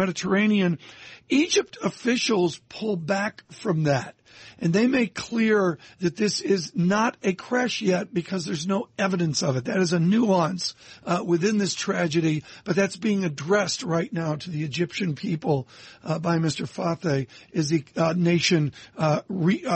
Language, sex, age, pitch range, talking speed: English, male, 60-79, 155-195 Hz, 155 wpm